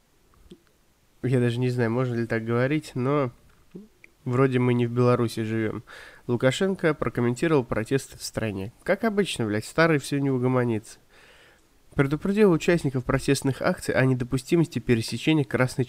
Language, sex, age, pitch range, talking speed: Russian, male, 20-39, 115-140 Hz, 130 wpm